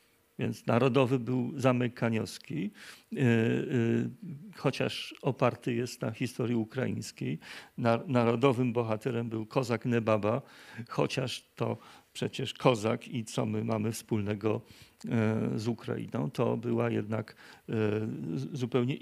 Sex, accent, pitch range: male, native, 115-135 Hz